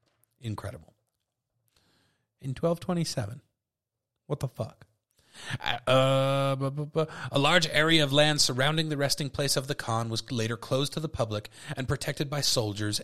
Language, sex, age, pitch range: English, male, 30-49, 105-135 Hz